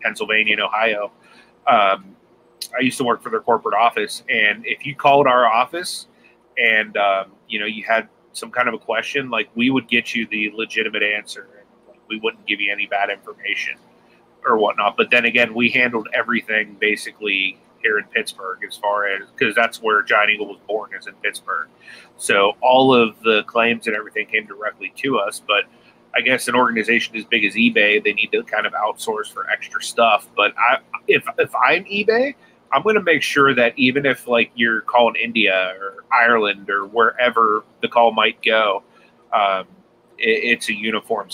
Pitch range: 105-140 Hz